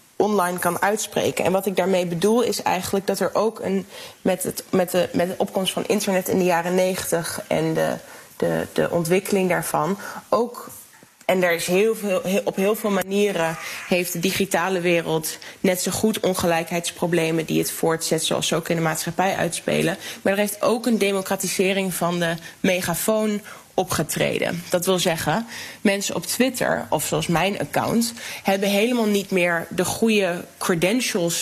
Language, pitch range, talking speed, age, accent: Dutch, 170-200 Hz, 170 wpm, 20-39, Dutch